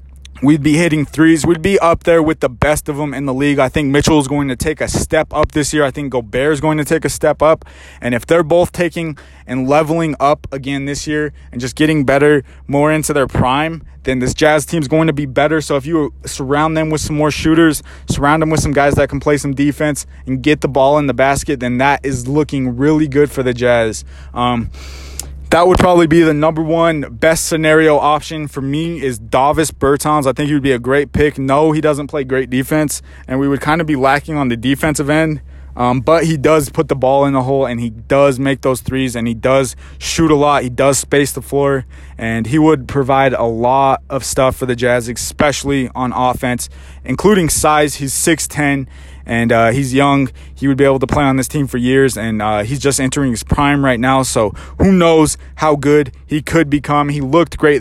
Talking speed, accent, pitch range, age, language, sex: 225 wpm, American, 130-155 Hz, 20-39, English, male